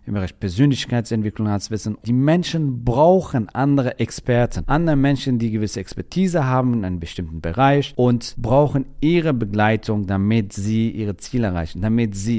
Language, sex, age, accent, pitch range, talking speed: German, male, 40-59, German, 110-145 Hz, 145 wpm